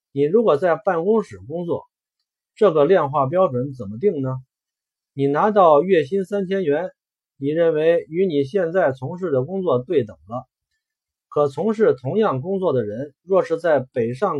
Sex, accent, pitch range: male, native, 130-195 Hz